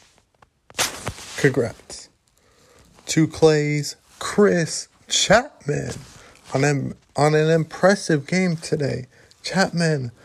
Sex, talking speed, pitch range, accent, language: male, 75 wpm, 125-175 Hz, American, English